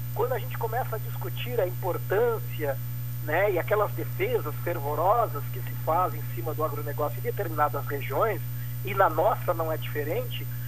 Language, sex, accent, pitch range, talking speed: Portuguese, male, Brazilian, 120-130 Hz, 165 wpm